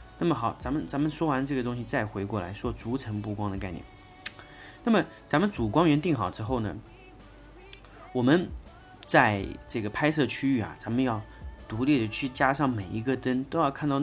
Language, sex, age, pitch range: Chinese, male, 30-49, 105-135 Hz